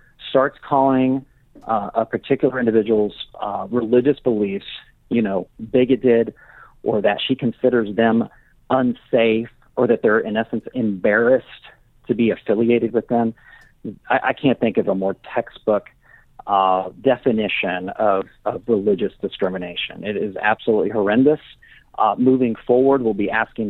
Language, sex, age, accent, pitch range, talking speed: English, male, 40-59, American, 115-145 Hz, 135 wpm